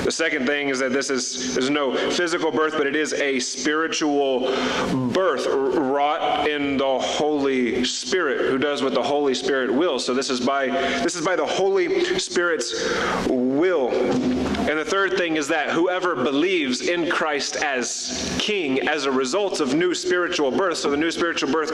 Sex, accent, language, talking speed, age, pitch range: male, American, English, 175 wpm, 30-49, 125-160 Hz